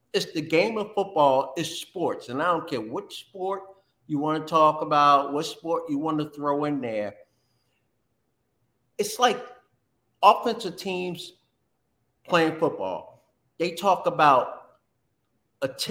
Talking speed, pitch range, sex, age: 135 wpm, 145-200 Hz, male, 50-69